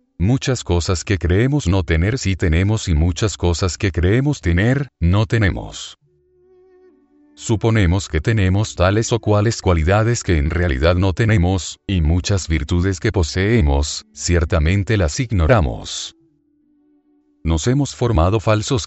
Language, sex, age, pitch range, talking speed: Spanish, male, 40-59, 85-115 Hz, 125 wpm